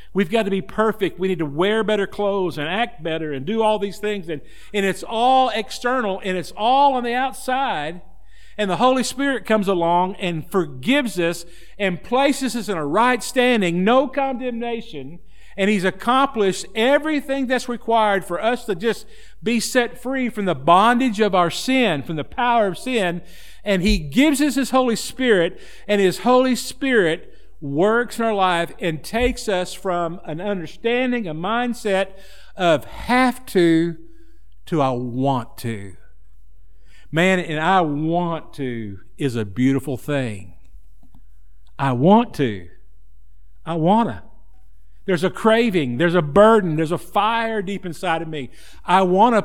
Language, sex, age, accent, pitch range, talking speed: English, male, 50-69, American, 155-230 Hz, 160 wpm